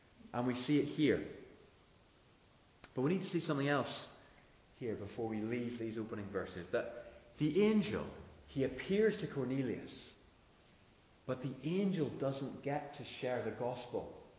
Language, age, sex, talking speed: English, 30-49, male, 145 wpm